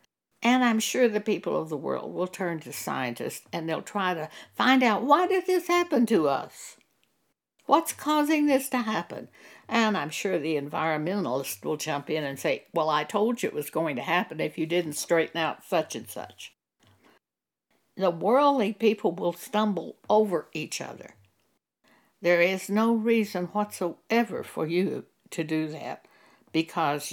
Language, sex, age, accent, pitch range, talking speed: English, female, 60-79, American, 165-230 Hz, 165 wpm